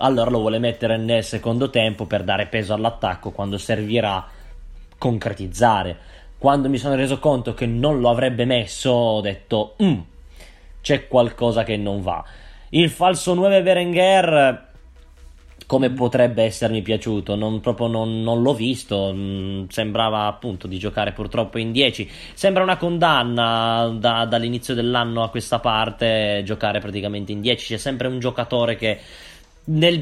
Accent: native